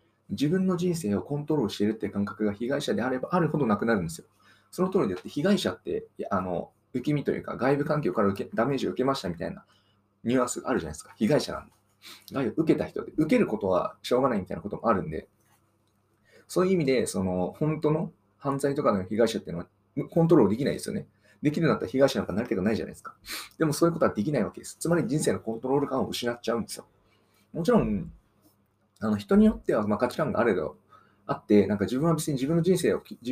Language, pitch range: Japanese, 105-170 Hz